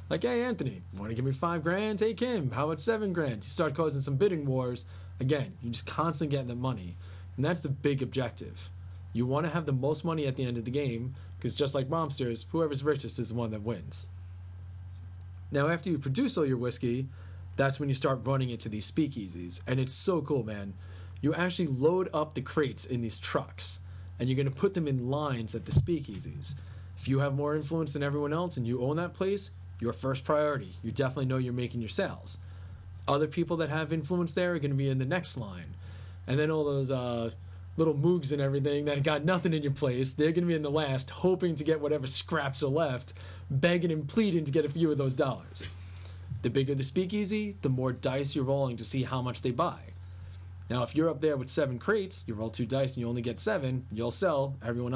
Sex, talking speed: male, 225 wpm